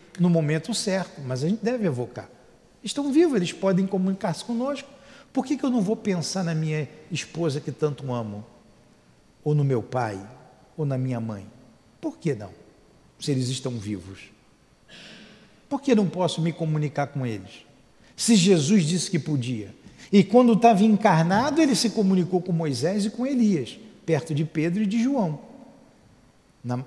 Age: 50-69